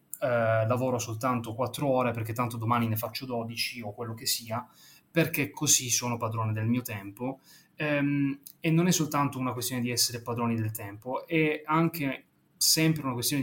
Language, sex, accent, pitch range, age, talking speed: Italian, male, native, 115-135 Hz, 20-39, 175 wpm